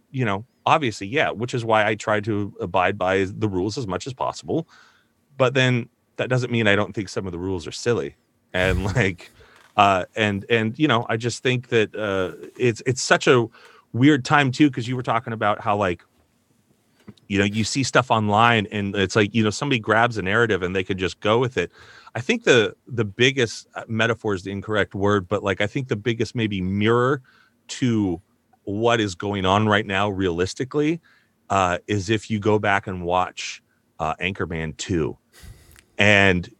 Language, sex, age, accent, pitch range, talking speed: English, male, 30-49, American, 95-120 Hz, 195 wpm